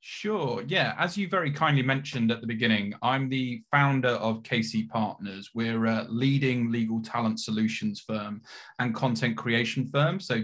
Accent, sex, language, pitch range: British, male, English, 110-125 Hz